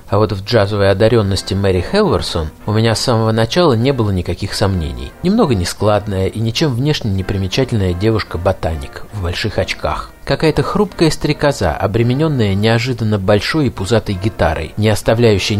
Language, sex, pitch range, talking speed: Russian, male, 95-130 Hz, 150 wpm